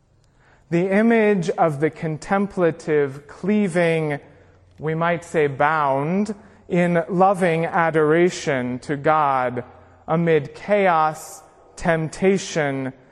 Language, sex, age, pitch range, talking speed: English, male, 30-49, 130-170 Hz, 80 wpm